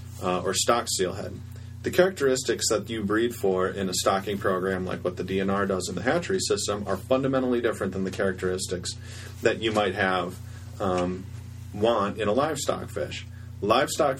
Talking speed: 175 wpm